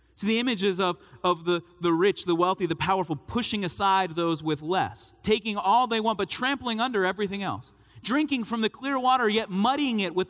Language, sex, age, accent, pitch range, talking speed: English, male, 40-59, American, 140-205 Hz, 205 wpm